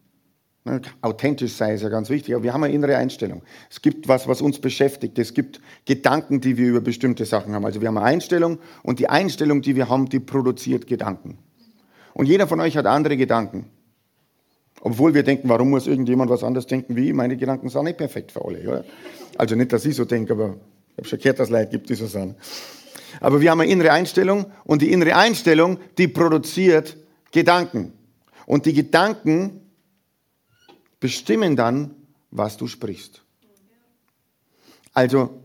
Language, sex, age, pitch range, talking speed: German, male, 50-69, 120-155 Hz, 180 wpm